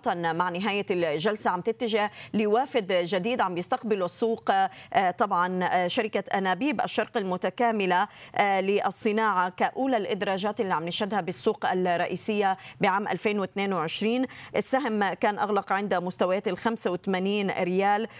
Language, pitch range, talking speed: Arabic, 175-210 Hz, 105 wpm